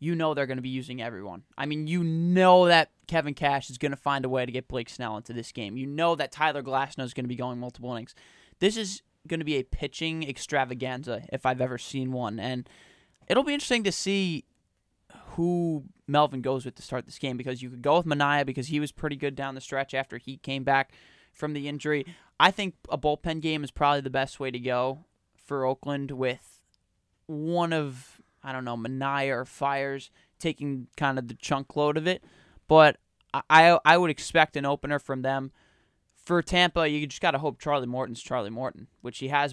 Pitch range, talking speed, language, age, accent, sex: 130-155 Hz, 215 wpm, English, 20-39, American, male